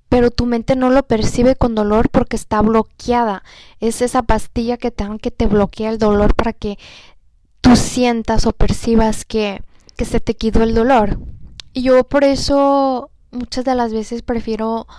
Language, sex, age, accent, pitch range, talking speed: Spanish, female, 10-29, Mexican, 220-245 Hz, 170 wpm